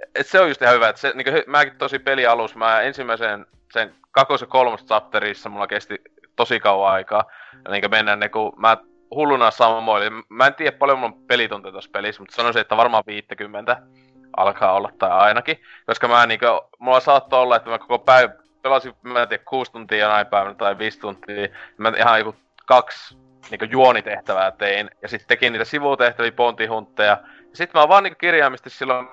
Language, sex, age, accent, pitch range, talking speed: Finnish, male, 20-39, native, 105-135 Hz, 180 wpm